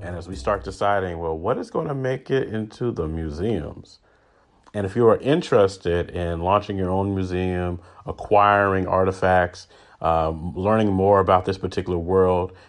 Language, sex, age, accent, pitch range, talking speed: English, male, 30-49, American, 90-110 Hz, 160 wpm